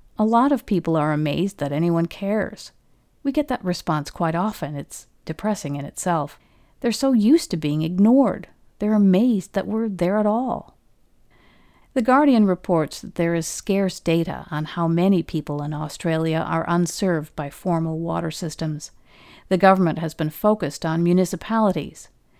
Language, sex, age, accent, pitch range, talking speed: English, female, 50-69, American, 155-210 Hz, 160 wpm